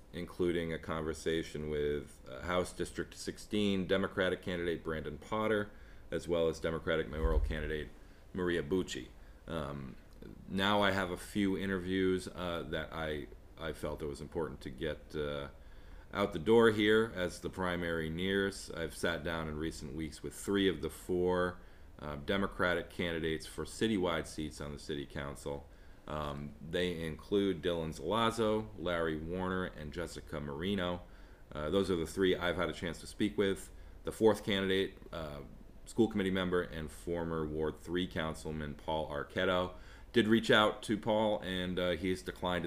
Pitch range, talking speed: 75-95 Hz, 160 wpm